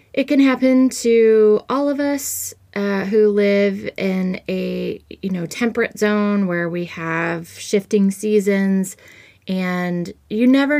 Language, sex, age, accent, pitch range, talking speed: English, female, 20-39, American, 170-215 Hz, 135 wpm